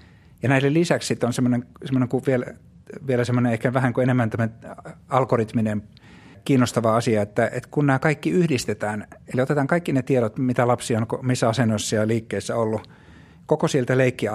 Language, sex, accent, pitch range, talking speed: Finnish, male, native, 110-135 Hz, 165 wpm